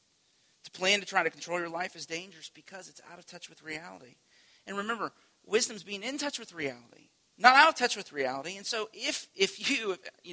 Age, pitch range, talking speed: 40-59, 155-205 Hz, 215 wpm